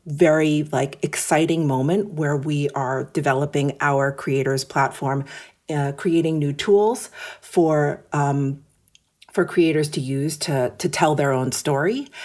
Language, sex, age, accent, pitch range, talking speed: English, female, 40-59, American, 140-170 Hz, 130 wpm